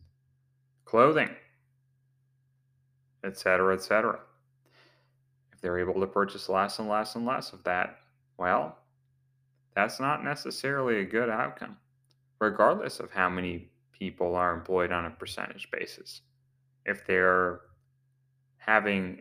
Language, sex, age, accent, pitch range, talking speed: English, male, 30-49, American, 95-130 Hz, 115 wpm